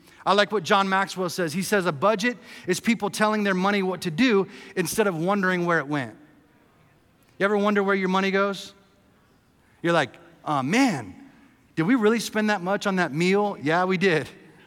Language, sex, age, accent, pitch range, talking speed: English, male, 30-49, American, 165-205 Hz, 190 wpm